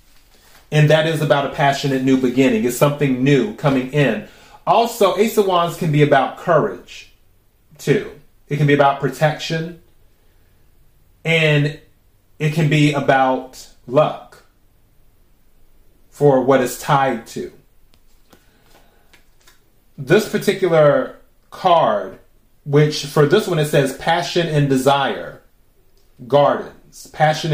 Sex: male